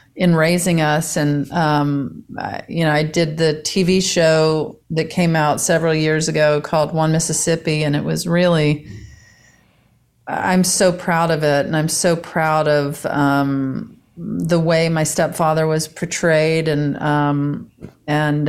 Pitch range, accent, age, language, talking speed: 150-170 Hz, American, 40-59, English, 145 wpm